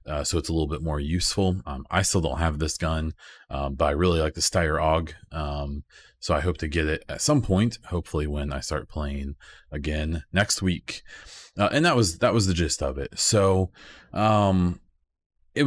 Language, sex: English, male